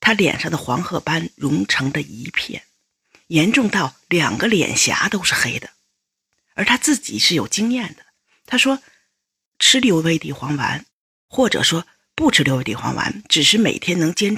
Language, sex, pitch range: Chinese, female, 145-225 Hz